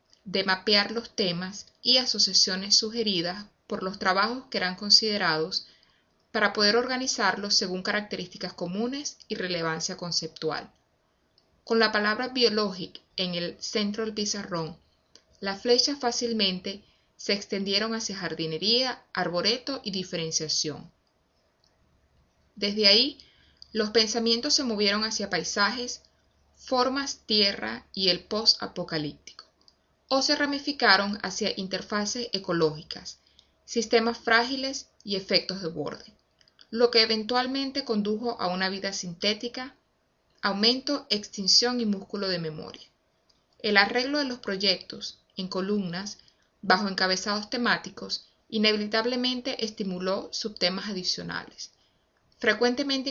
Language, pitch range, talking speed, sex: Spanish, 190-235 Hz, 105 wpm, female